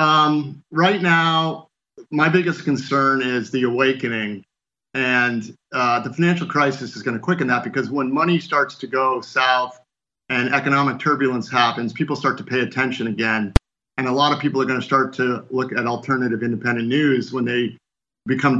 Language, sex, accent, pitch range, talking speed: English, male, American, 120-145 Hz, 175 wpm